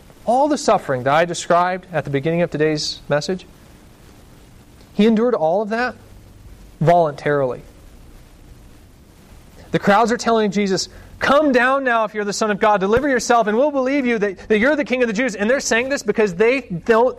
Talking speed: 185 wpm